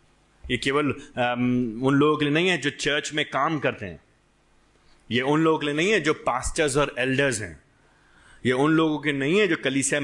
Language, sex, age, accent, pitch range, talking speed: Hindi, male, 30-49, native, 125-170 Hz, 195 wpm